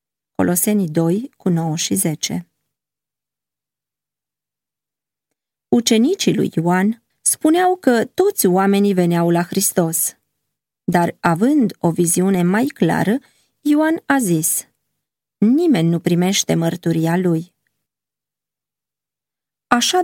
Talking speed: 95 wpm